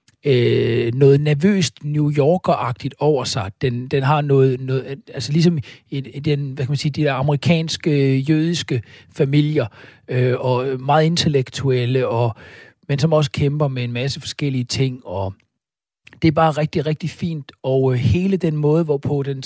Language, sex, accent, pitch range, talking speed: Danish, male, native, 125-150 Hz, 115 wpm